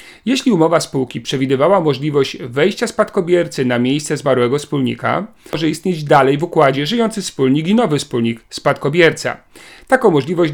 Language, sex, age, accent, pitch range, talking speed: Polish, male, 40-59, native, 125-175 Hz, 135 wpm